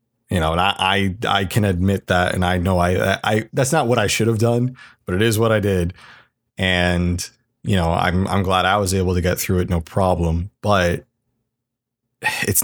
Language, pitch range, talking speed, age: English, 90-115 Hz, 215 wpm, 30-49